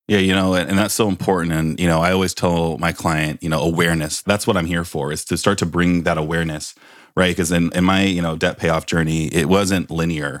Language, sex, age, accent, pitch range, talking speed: English, male, 30-49, American, 80-95 Hz, 235 wpm